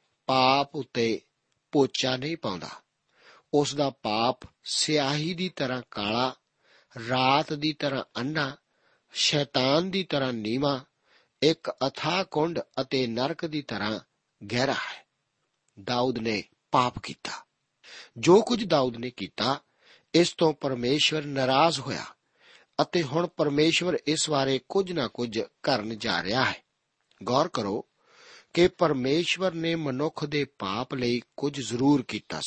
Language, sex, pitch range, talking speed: Punjabi, male, 125-155 Hz, 120 wpm